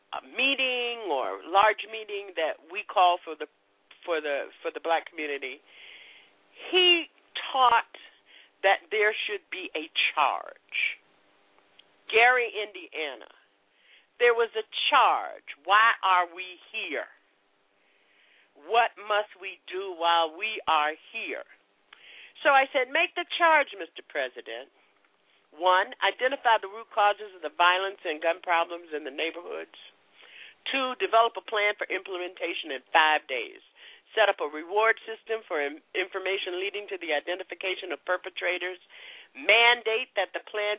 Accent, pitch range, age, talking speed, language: American, 175-245 Hz, 50-69, 135 wpm, English